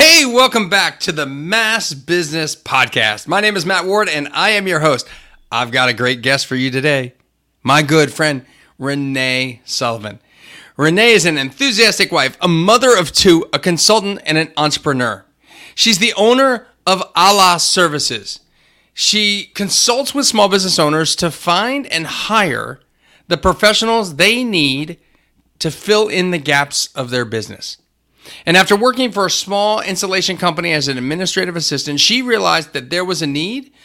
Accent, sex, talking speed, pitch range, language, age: American, male, 165 wpm, 140-200 Hz, English, 30-49